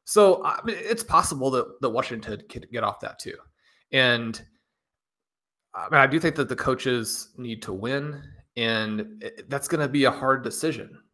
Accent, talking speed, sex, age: American, 160 wpm, male, 30-49